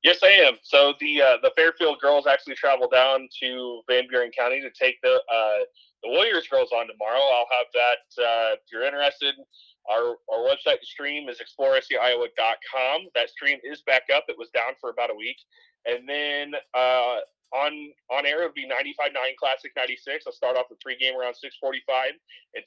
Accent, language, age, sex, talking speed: American, English, 20-39, male, 185 wpm